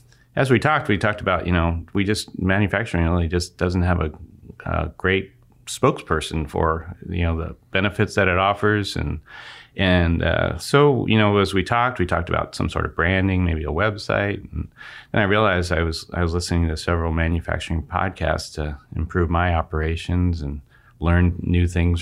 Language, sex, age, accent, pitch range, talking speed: English, male, 30-49, American, 85-100 Hz, 185 wpm